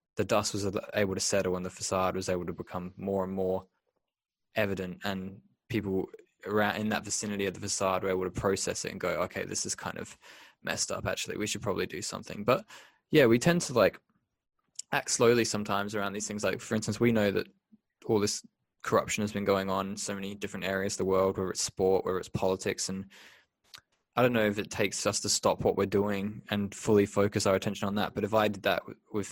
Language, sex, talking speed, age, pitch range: English, male, 225 wpm, 20-39, 95-105 Hz